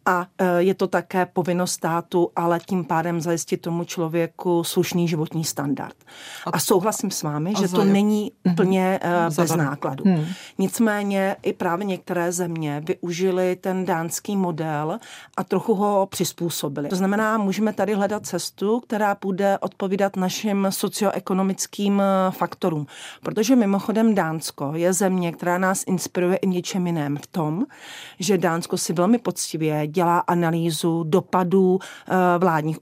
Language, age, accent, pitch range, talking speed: Czech, 40-59, native, 170-195 Hz, 130 wpm